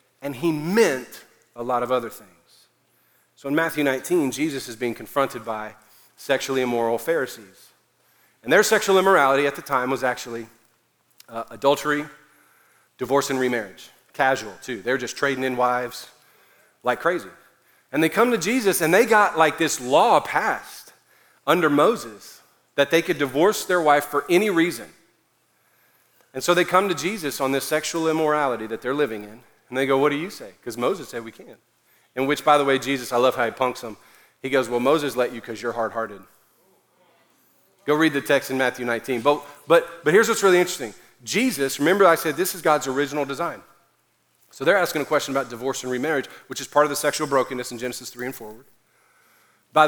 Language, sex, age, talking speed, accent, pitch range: English, male, 40-59, 190 wpm, American, 125-150 Hz